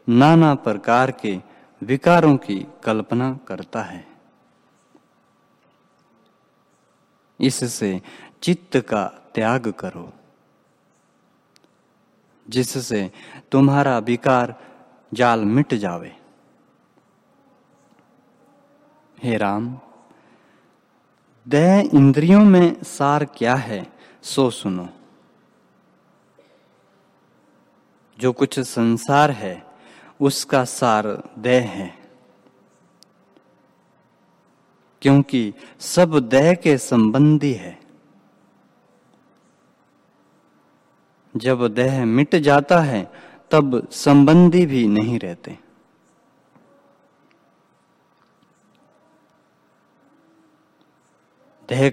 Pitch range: 115-145 Hz